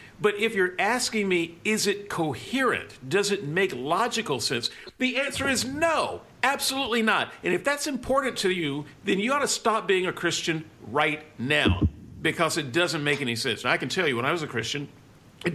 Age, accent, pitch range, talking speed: 50-69, American, 130-190 Hz, 200 wpm